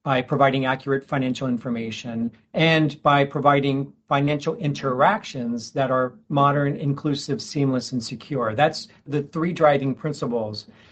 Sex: male